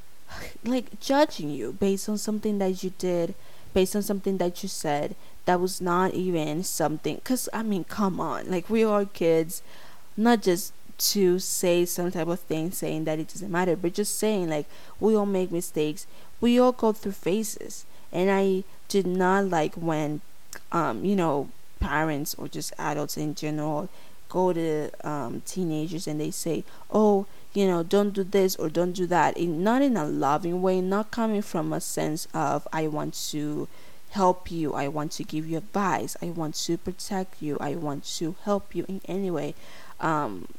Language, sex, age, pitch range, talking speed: English, female, 20-39, 160-200 Hz, 180 wpm